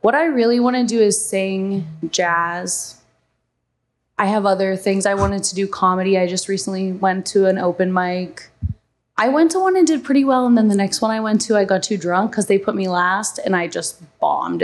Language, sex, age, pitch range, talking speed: English, female, 20-39, 185-220 Hz, 225 wpm